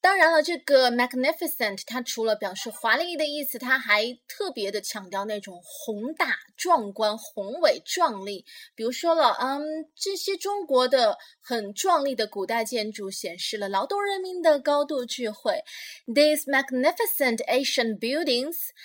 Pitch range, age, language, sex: 210-315 Hz, 20-39, Chinese, female